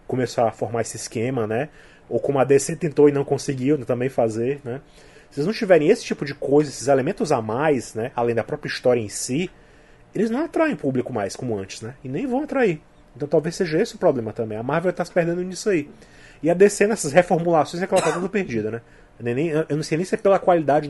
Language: Portuguese